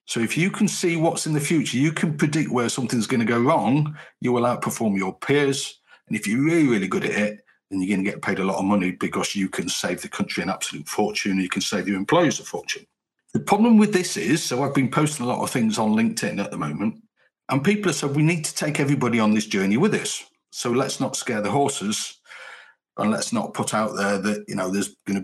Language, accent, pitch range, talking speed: English, British, 105-155 Hz, 255 wpm